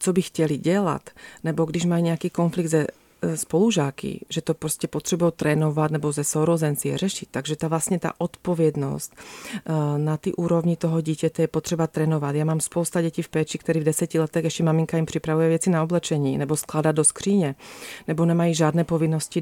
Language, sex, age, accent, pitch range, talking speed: Czech, female, 30-49, native, 155-180 Hz, 185 wpm